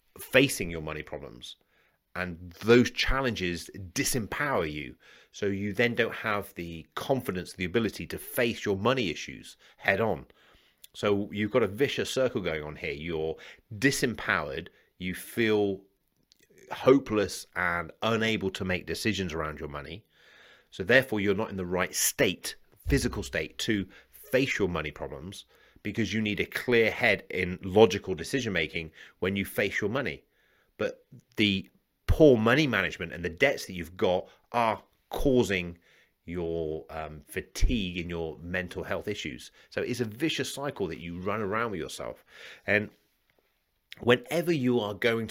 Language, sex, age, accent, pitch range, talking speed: English, male, 30-49, British, 85-110 Hz, 150 wpm